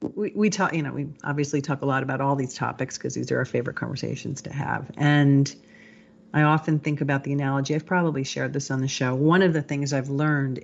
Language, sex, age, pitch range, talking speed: English, female, 40-59, 135-150 Hz, 235 wpm